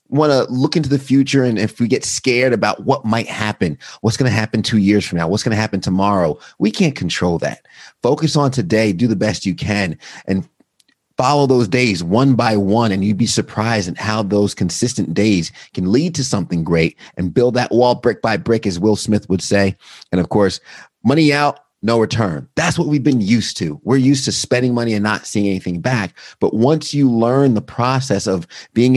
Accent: American